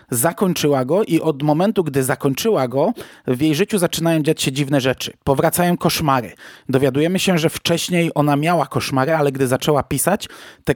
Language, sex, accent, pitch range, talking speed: Polish, male, native, 130-160 Hz, 165 wpm